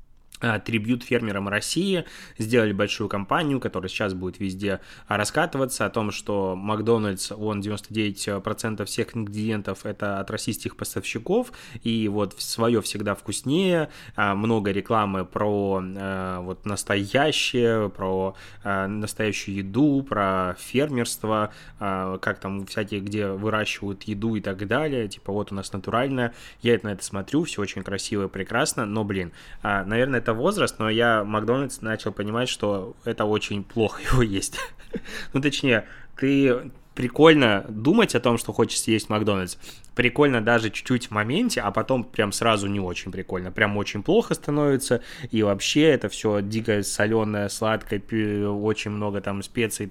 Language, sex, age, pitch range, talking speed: Russian, male, 20-39, 100-120 Hz, 140 wpm